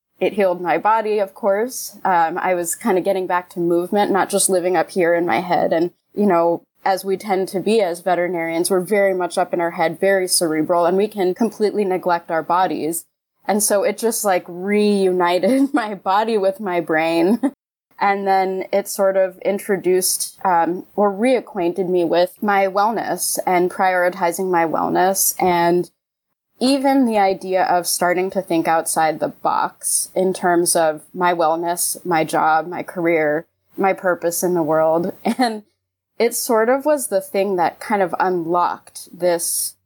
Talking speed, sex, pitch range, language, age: 170 wpm, female, 175-200 Hz, English, 20-39